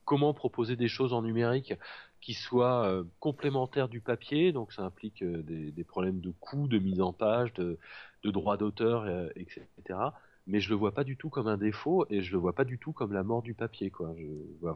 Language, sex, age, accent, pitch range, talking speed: French, male, 30-49, French, 90-125 Hz, 215 wpm